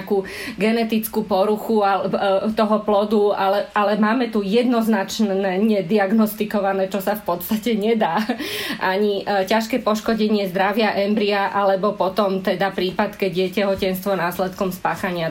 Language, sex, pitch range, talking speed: Slovak, female, 190-215 Hz, 110 wpm